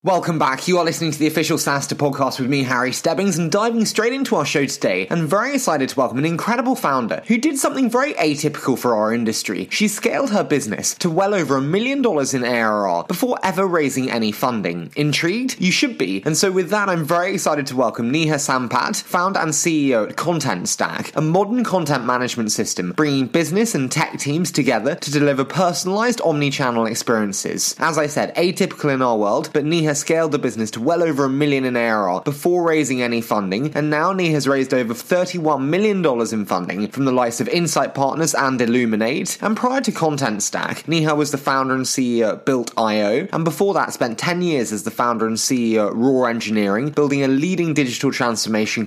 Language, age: English, 20-39